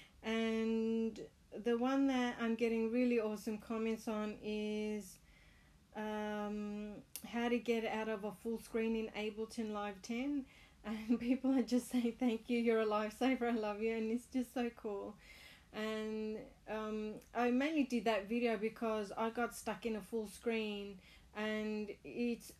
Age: 30-49